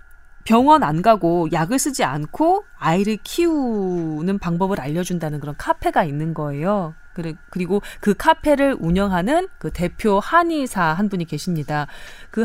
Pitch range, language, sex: 175-280 Hz, Korean, female